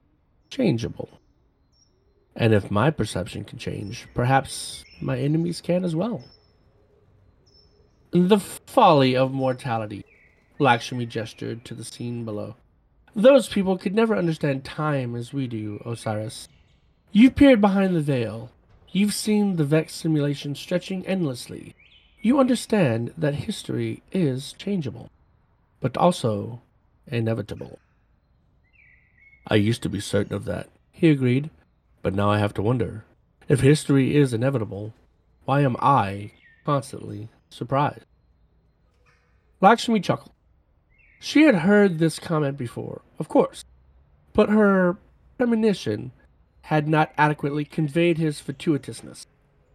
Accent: American